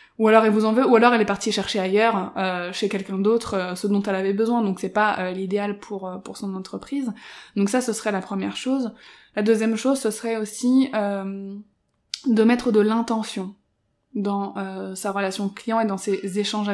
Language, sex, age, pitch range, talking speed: French, female, 20-39, 195-220 Hz, 210 wpm